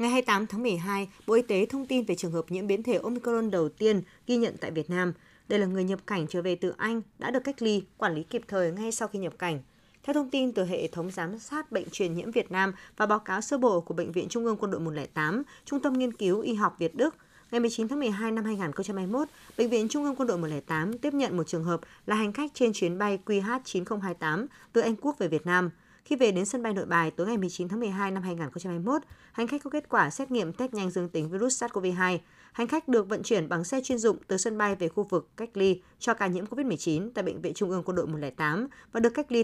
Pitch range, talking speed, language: 180-235 Hz, 260 wpm, Vietnamese